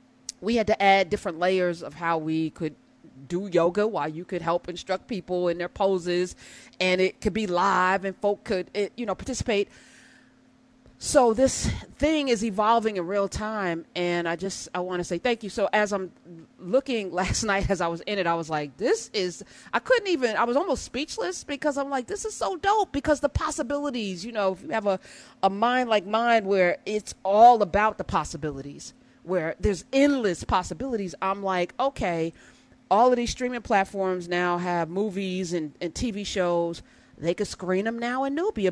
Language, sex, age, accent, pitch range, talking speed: English, female, 30-49, American, 185-260 Hz, 190 wpm